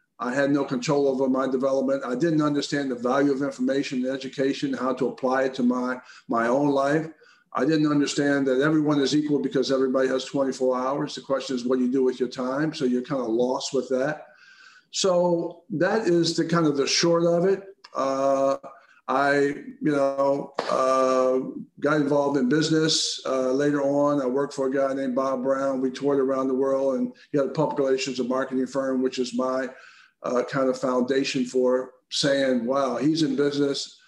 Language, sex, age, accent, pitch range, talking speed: English, male, 50-69, American, 130-145 Hz, 195 wpm